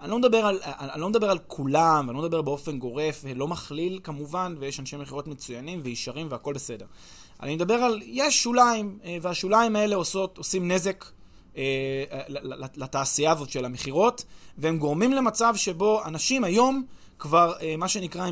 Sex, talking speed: male, 145 wpm